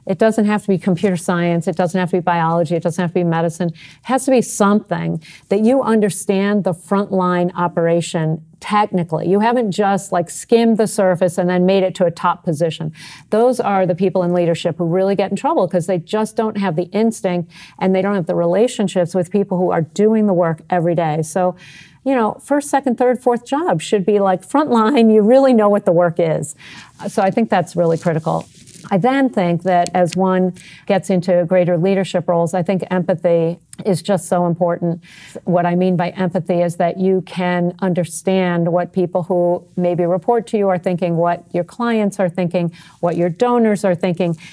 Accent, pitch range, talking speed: American, 175-200 Hz, 205 wpm